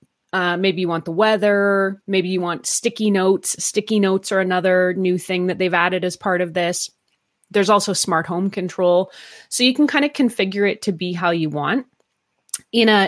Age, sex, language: 30-49, female, English